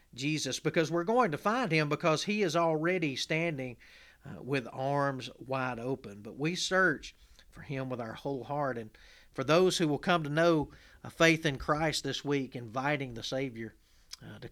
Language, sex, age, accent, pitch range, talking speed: English, male, 40-59, American, 130-165 Hz, 185 wpm